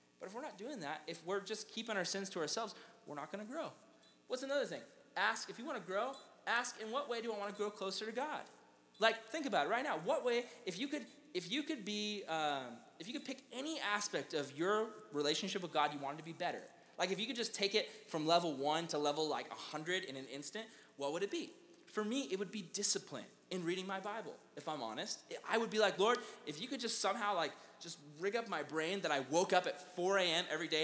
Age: 20-39